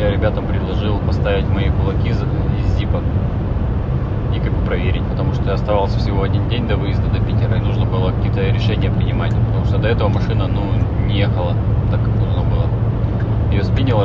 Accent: native